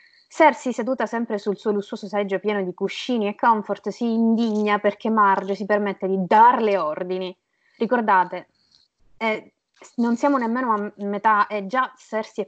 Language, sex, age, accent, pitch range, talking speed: Italian, female, 20-39, native, 180-220 Hz, 160 wpm